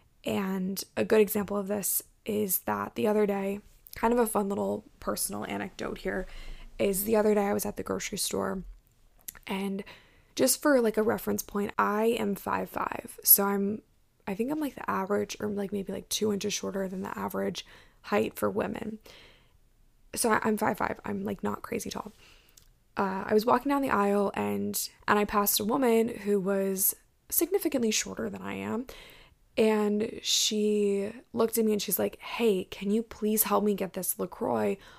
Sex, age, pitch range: female, 10-29, 195-225 Hz